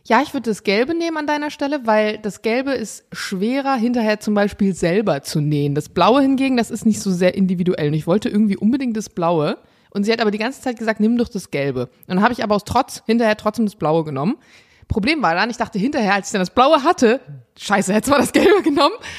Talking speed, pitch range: 245 wpm, 180-230 Hz